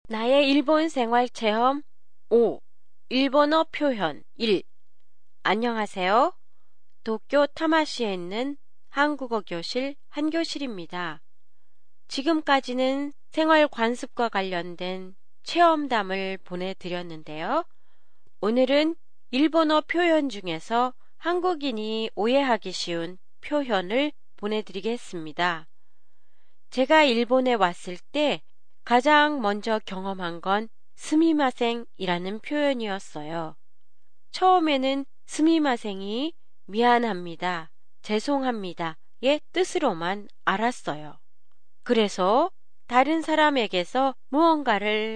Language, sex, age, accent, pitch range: Japanese, female, 30-49, Korean, 195-285 Hz